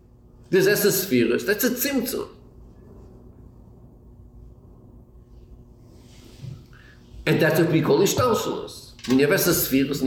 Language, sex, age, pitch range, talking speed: English, male, 50-69, 120-185 Hz, 105 wpm